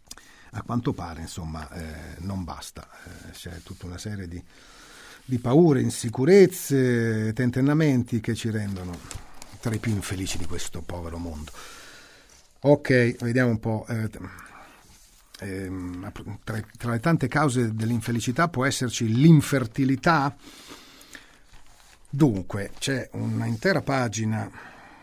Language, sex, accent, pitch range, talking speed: Italian, male, native, 100-130 Hz, 115 wpm